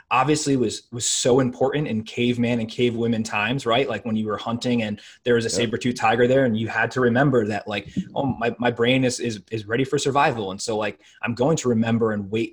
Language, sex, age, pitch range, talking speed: English, male, 20-39, 110-125 Hz, 240 wpm